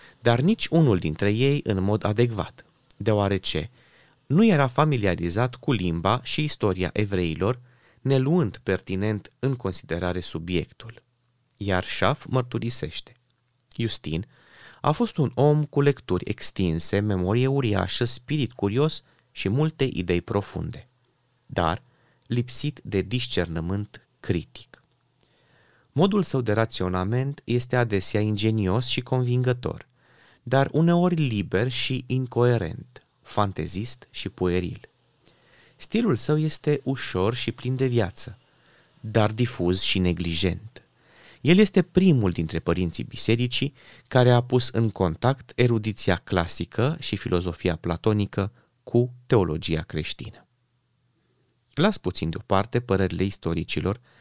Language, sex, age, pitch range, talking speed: Romanian, male, 30-49, 95-130 Hz, 110 wpm